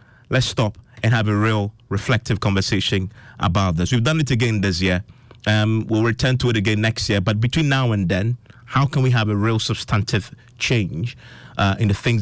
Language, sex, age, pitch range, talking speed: English, male, 30-49, 100-125 Hz, 200 wpm